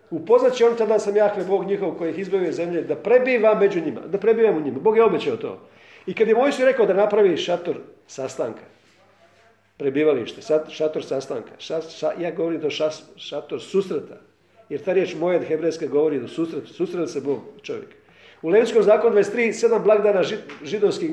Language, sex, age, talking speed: Croatian, male, 50-69, 175 wpm